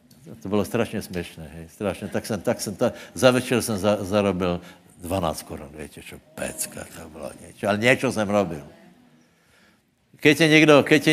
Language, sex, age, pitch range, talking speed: Slovak, male, 60-79, 105-140 Hz, 155 wpm